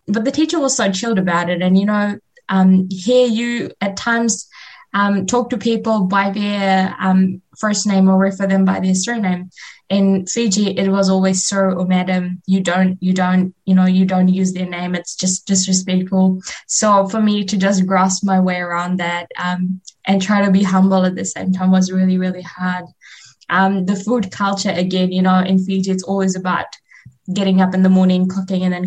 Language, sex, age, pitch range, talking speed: English, female, 10-29, 185-205 Hz, 200 wpm